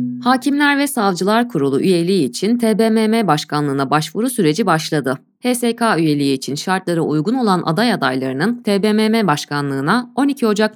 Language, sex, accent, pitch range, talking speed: Turkish, female, native, 155-250 Hz, 130 wpm